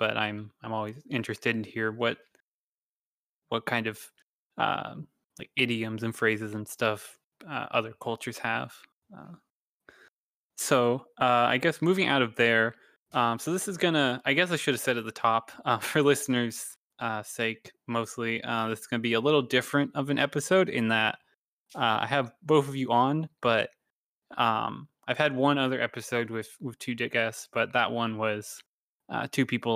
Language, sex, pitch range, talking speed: English, male, 115-135 Hz, 180 wpm